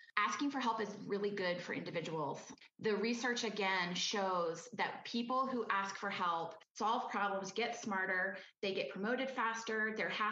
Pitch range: 190-230 Hz